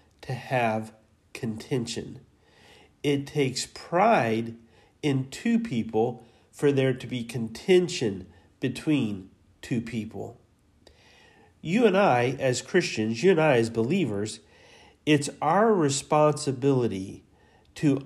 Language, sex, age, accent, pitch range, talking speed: English, male, 40-59, American, 115-170 Hz, 105 wpm